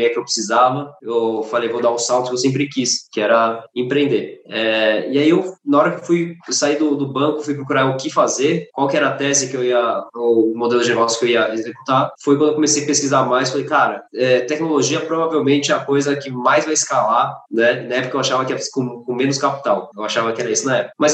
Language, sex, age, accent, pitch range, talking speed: Portuguese, male, 20-39, Brazilian, 120-145 Hz, 255 wpm